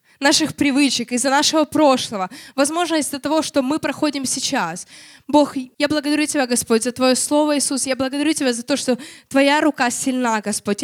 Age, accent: 20-39, native